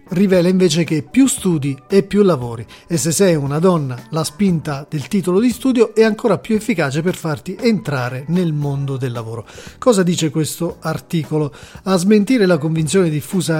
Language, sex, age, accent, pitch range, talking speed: Italian, male, 40-59, native, 150-195 Hz, 170 wpm